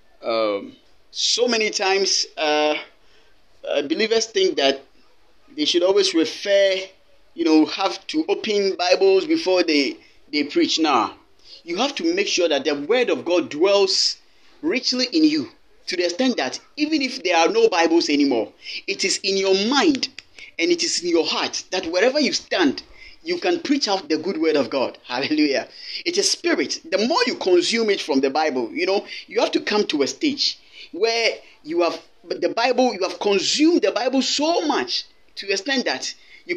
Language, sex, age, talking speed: English, male, 30-49, 180 wpm